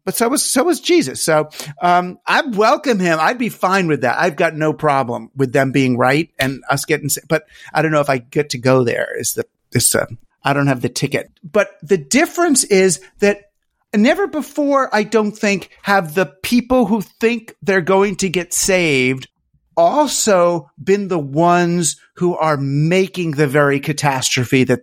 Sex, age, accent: male, 50-69, American